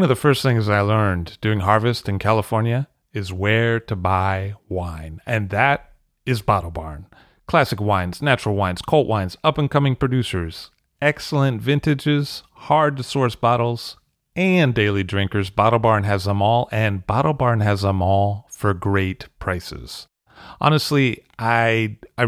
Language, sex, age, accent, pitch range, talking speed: English, male, 30-49, American, 95-130 Hz, 145 wpm